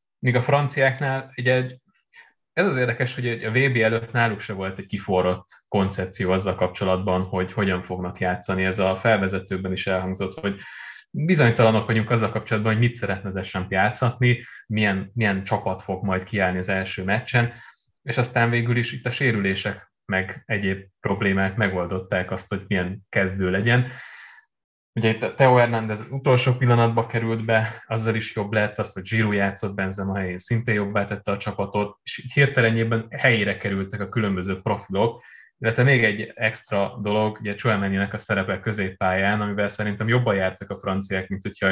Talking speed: 165 wpm